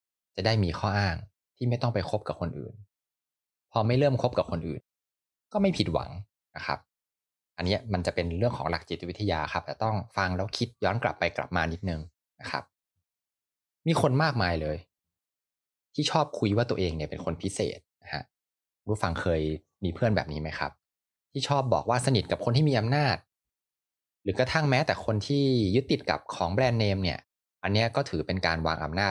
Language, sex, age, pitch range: Thai, male, 20-39, 80-115 Hz